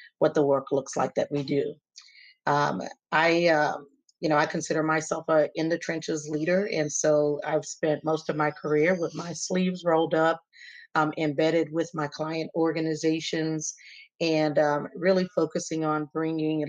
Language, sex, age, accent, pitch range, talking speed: English, female, 40-59, American, 150-165 Hz, 165 wpm